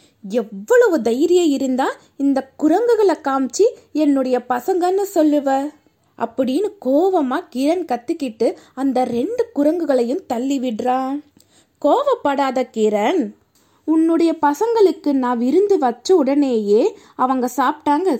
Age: 20-39